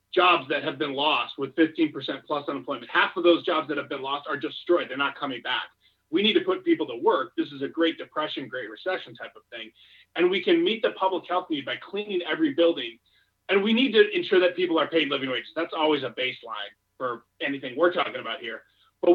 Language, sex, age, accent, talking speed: English, male, 30-49, American, 230 wpm